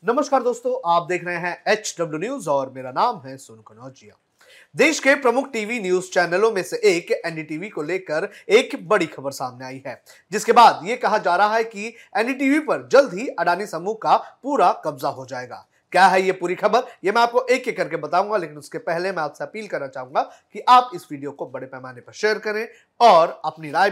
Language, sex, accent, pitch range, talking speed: Hindi, male, native, 160-225 Hz, 220 wpm